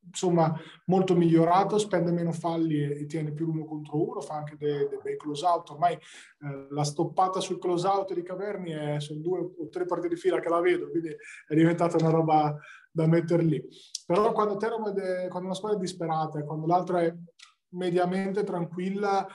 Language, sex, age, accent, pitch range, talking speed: Italian, male, 20-39, native, 150-180 Hz, 185 wpm